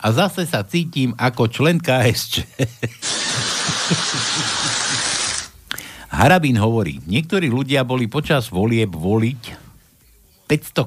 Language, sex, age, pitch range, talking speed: Slovak, male, 60-79, 105-150 Hz, 90 wpm